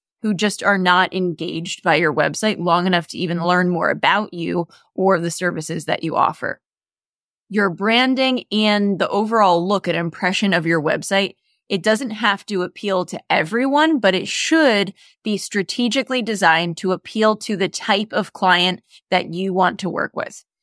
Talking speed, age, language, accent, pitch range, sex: 170 wpm, 20-39, English, American, 180-215 Hz, female